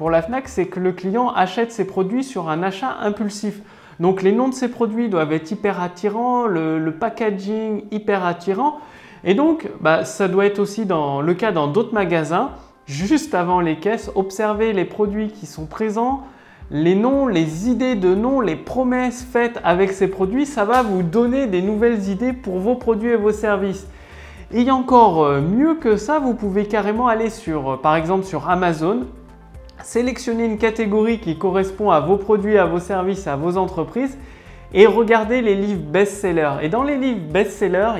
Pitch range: 175-235 Hz